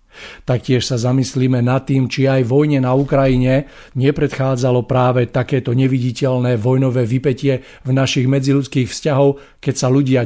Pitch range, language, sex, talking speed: 120-135 Hz, Slovak, male, 135 wpm